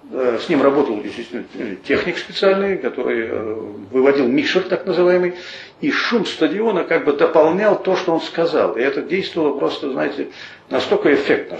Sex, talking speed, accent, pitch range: male, 150 wpm, native, 135-215 Hz